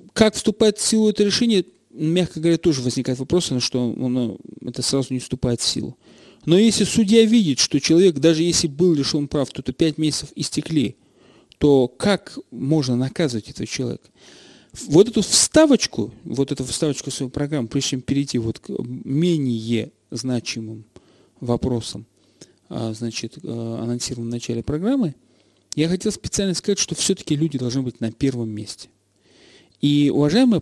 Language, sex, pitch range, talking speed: Russian, male, 125-170 Hz, 150 wpm